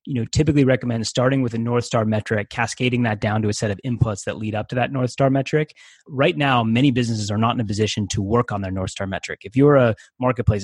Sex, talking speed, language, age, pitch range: male, 260 wpm, English, 20-39, 105-125 Hz